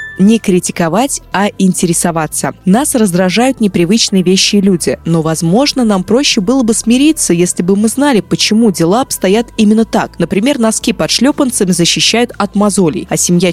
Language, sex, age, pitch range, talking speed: Russian, female, 20-39, 165-215 Hz, 155 wpm